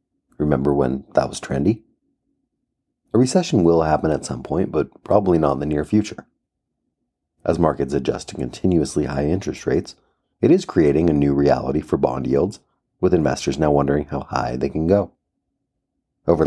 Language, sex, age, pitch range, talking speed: English, male, 30-49, 70-80 Hz, 170 wpm